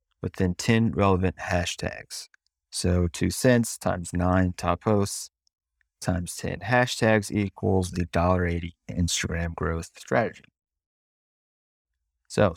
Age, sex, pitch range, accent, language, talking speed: 30-49, male, 80-110 Hz, American, English, 105 wpm